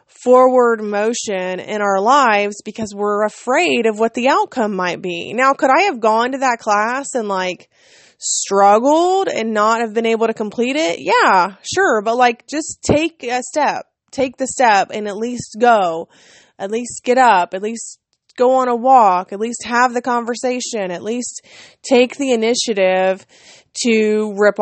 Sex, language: female, English